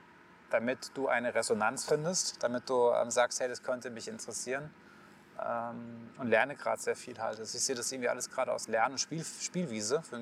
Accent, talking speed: German, 190 wpm